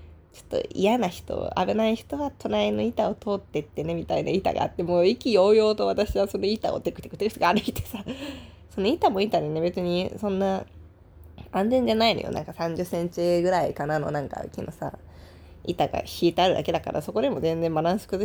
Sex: female